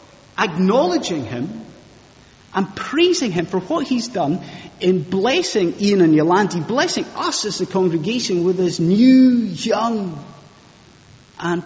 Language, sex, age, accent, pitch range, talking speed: English, male, 30-49, British, 150-220 Hz, 125 wpm